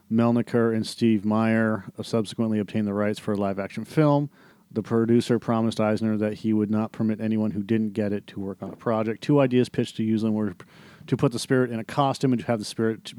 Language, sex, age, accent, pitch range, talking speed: English, male, 40-59, American, 105-120 Hz, 225 wpm